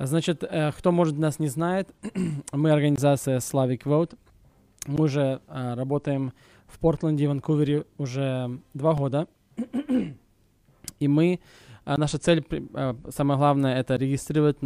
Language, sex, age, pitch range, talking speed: English, male, 20-39, 125-145 Hz, 110 wpm